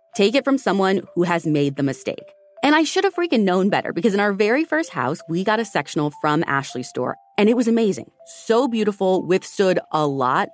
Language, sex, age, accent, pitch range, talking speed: English, female, 30-49, American, 160-245 Hz, 215 wpm